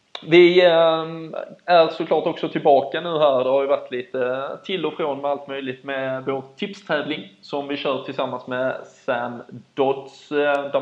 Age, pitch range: 20-39, 130-150 Hz